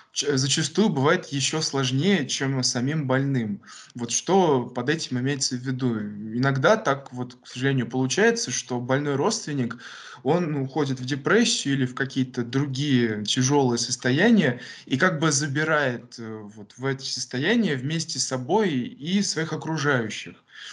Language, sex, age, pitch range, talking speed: Russian, male, 20-39, 120-145 Hz, 135 wpm